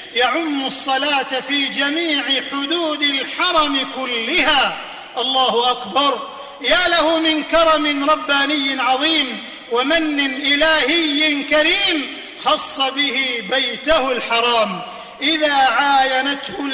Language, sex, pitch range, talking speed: Arabic, male, 260-320 Hz, 85 wpm